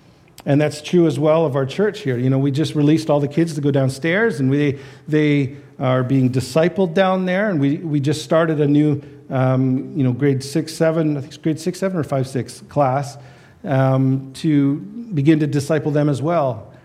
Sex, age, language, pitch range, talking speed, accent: male, 50-69, English, 130-160 Hz, 210 wpm, American